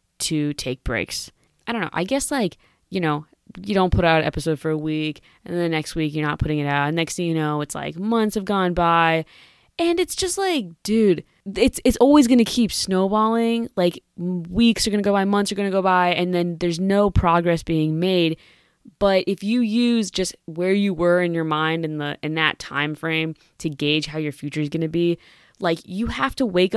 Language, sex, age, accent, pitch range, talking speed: English, female, 20-39, American, 160-205 Hz, 230 wpm